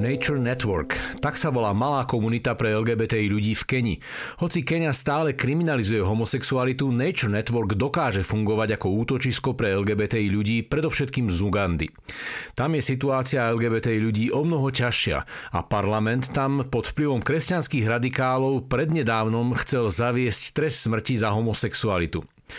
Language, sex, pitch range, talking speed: Slovak, male, 105-125 Hz, 135 wpm